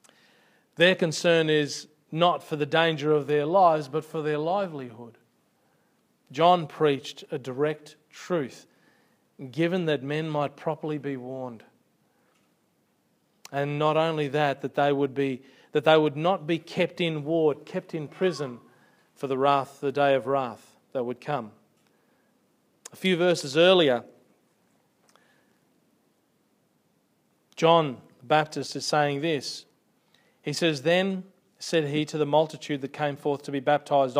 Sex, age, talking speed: male, 40-59, 140 wpm